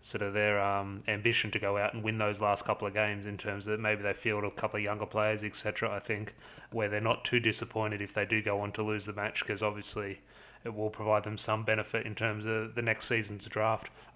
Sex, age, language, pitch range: male, 30-49, English, 105-115 Hz